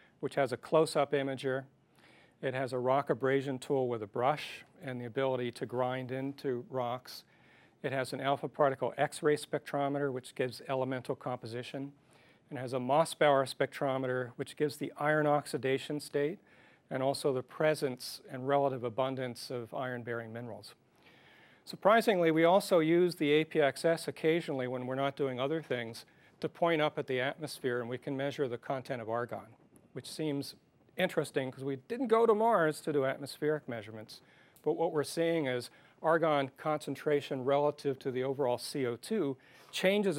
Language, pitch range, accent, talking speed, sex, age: English, 130-150 Hz, American, 160 wpm, male, 40-59